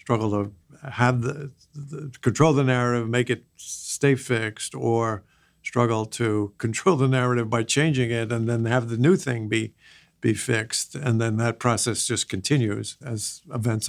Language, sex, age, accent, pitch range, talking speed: English, male, 50-69, American, 120-150 Hz, 165 wpm